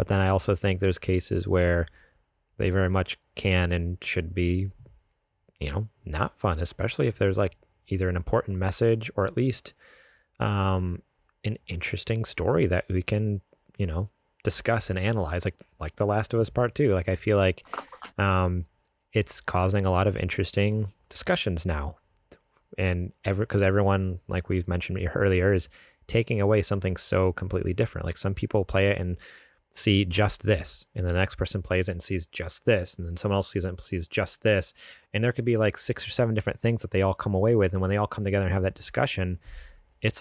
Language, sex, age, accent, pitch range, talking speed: English, male, 30-49, American, 90-110 Hz, 200 wpm